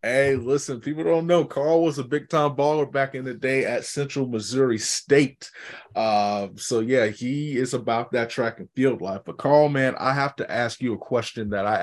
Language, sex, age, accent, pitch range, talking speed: English, male, 20-39, American, 110-135 Hz, 210 wpm